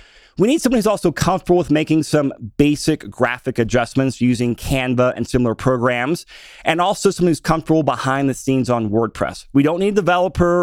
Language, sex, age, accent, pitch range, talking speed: English, male, 30-49, American, 130-165 Hz, 180 wpm